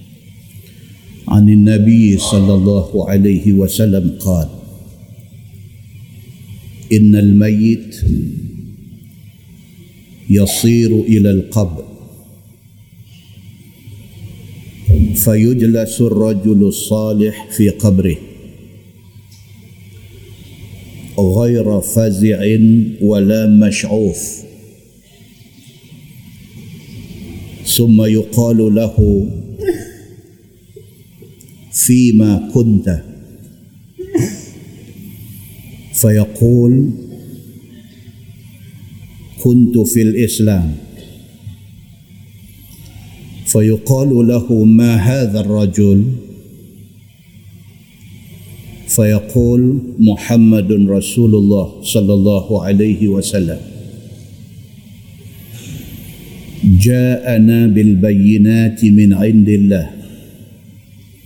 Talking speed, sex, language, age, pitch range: 45 wpm, male, Malay, 50-69, 100-115 Hz